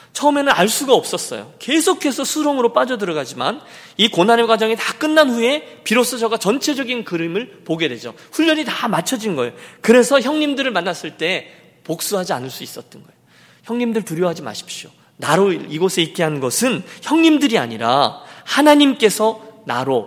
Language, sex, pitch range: Korean, male, 155-235 Hz